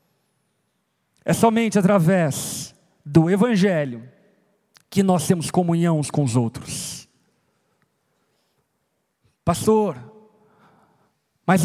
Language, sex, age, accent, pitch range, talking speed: Portuguese, male, 50-69, Brazilian, 165-220 Hz, 70 wpm